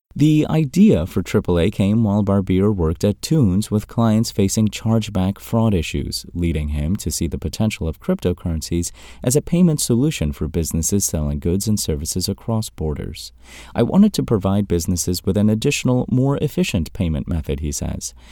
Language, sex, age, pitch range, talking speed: English, male, 30-49, 80-105 Hz, 165 wpm